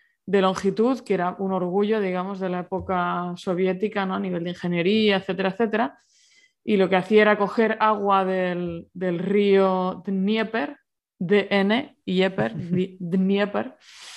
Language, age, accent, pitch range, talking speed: Spanish, 20-39, Spanish, 180-205 Hz, 125 wpm